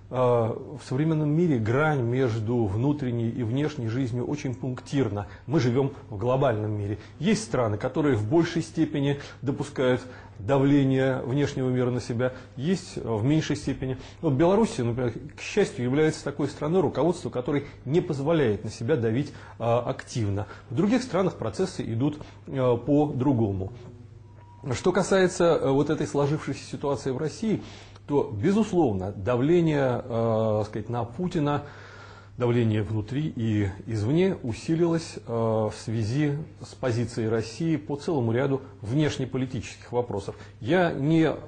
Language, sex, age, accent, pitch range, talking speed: Russian, male, 30-49, native, 115-150 Hz, 125 wpm